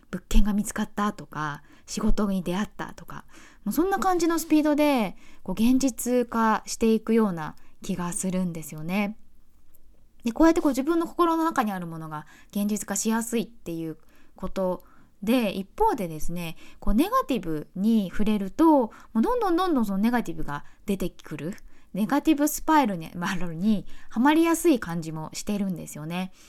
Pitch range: 175-260 Hz